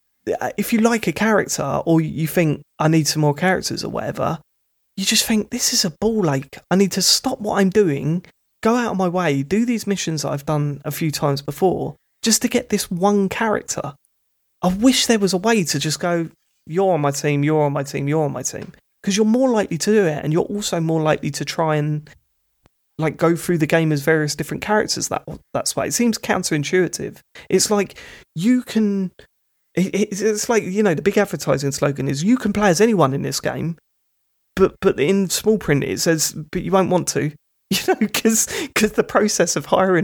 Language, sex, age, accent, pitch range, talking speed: English, male, 20-39, British, 145-200 Hz, 215 wpm